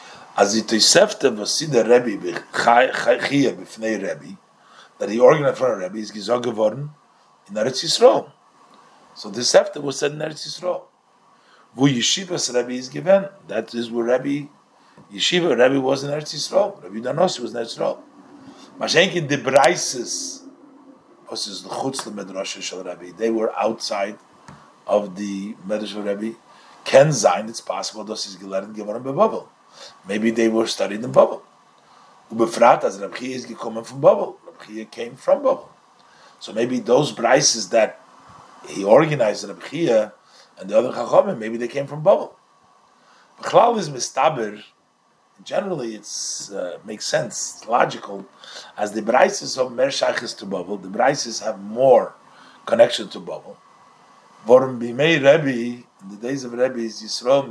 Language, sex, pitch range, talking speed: English, male, 110-150 Hz, 150 wpm